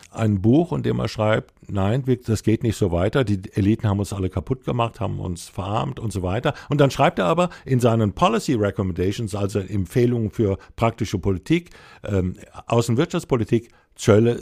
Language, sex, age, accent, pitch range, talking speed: German, male, 60-79, German, 100-120 Hz, 175 wpm